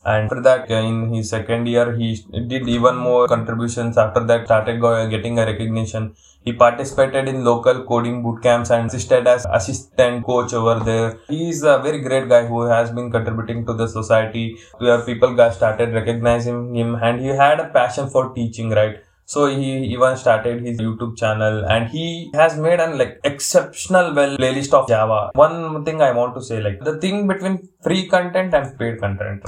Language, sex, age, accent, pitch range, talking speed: English, male, 20-39, Indian, 115-140 Hz, 185 wpm